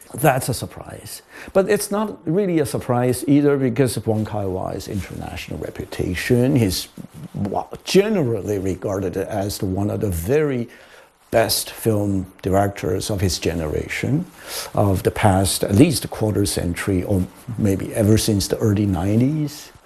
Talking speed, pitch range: 135 wpm, 100-135 Hz